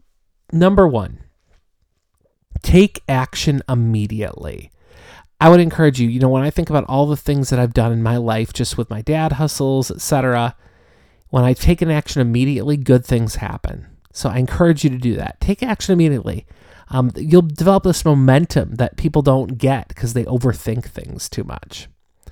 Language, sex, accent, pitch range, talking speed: English, male, American, 115-165 Hz, 175 wpm